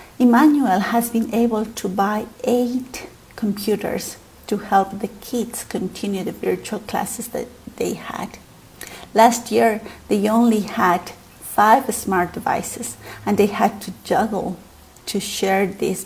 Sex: female